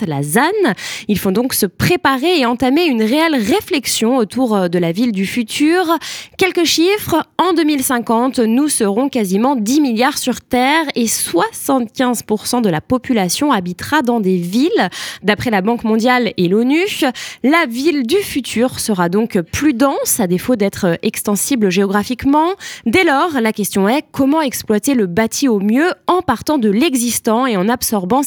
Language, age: French, 20-39